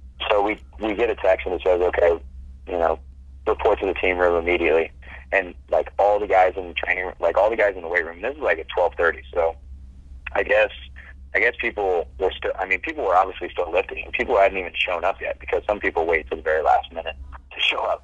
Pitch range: 70-100 Hz